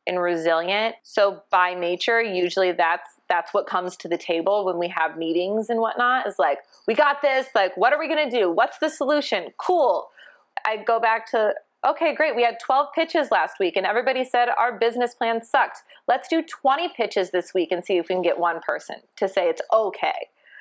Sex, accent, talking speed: female, American, 205 wpm